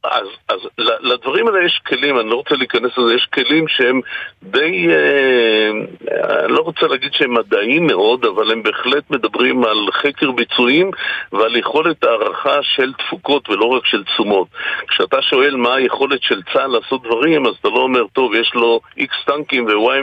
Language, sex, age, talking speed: Hebrew, male, 50-69, 175 wpm